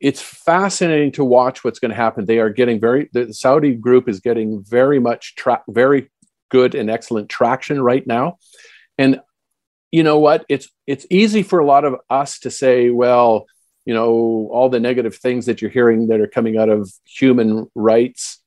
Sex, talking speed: male, 190 wpm